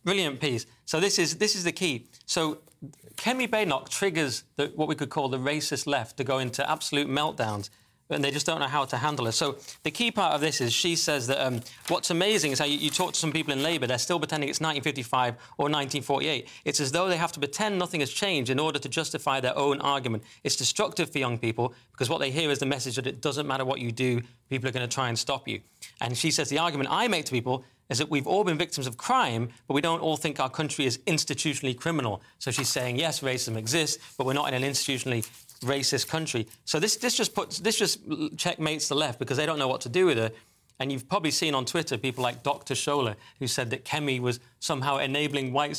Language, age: English, 30-49